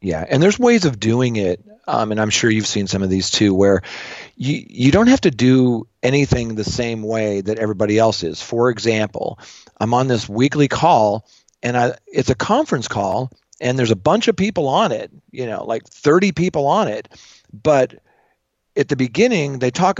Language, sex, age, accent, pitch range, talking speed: English, male, 40-59, American, 120-170 Hz, 200 wpm